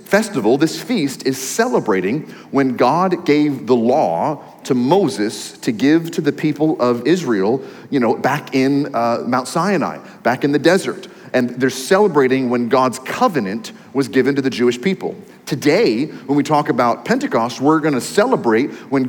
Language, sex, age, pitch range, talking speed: English, male, 40-59, 130-170 Hz, 165 wpm